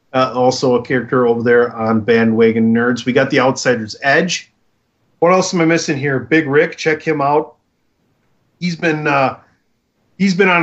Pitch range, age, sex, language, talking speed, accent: 120-155 Hz, 30-49, male, English, 175 wpm, American